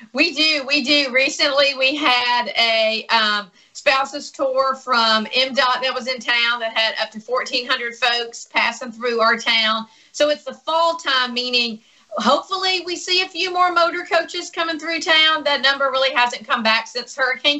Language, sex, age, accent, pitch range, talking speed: English, female, 40-59, American, 230-290 Hz, 175 wpm